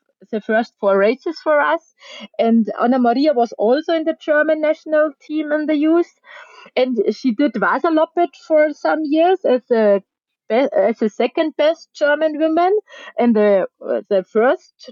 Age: 30-49